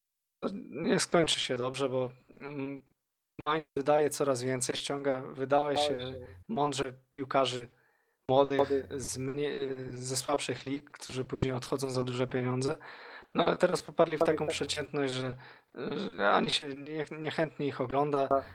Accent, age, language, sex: native, 20-39, Polish, male